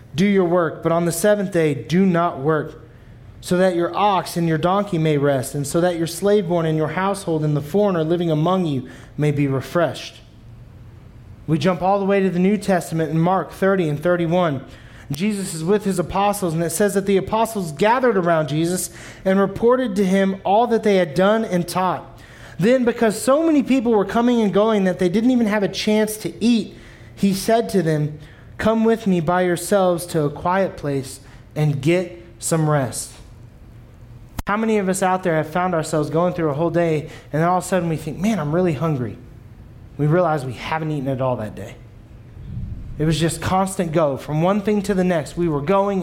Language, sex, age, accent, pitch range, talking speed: English, male, 30-49, American, 145-195 Hz, 210 wpm